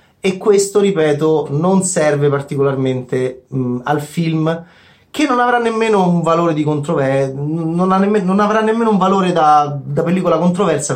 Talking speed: 155 wpm